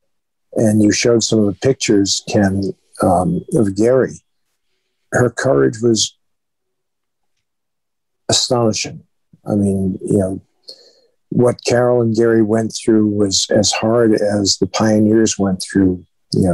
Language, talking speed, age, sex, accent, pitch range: English, 125 wpm, 50-69, male, American, 100-120 Hz